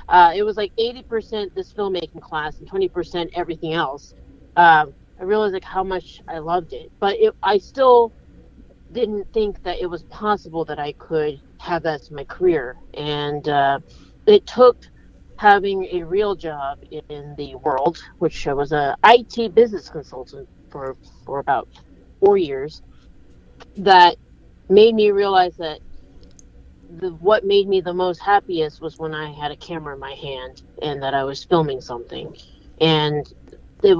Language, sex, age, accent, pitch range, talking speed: English, female, 40-59, American, 150-200 Hz, 160 wpm